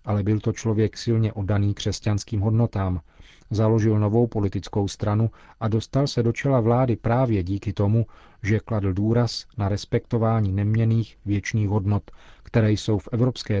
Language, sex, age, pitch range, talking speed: Czech, male, 40-59, 100-115 Hz, 145 wpm